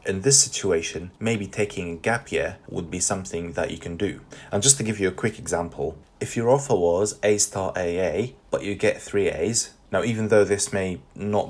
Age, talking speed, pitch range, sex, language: 20-39, 215 wpm, 90-110 Hz, male, English